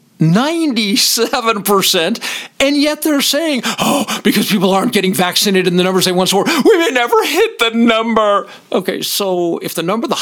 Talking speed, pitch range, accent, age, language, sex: 165 wpm, 145-230 Hz, American, 50-69, English, male